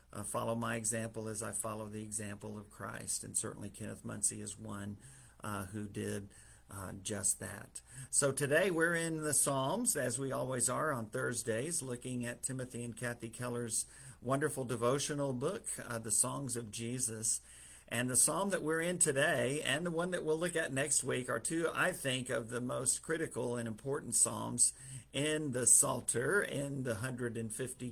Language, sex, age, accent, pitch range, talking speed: English, male, 50-69, American, 110-130 Hz, 175 wpm